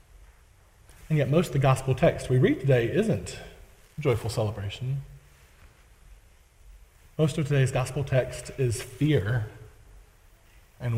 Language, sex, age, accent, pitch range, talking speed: English, male, 20-39, American, 110-150 Hz, 115 wpm